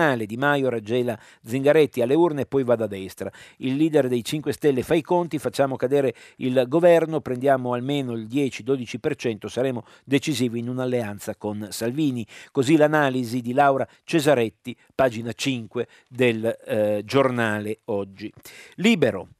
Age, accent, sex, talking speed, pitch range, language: 50-69, native, male, 140 wpm, 115-145 Hz, Italian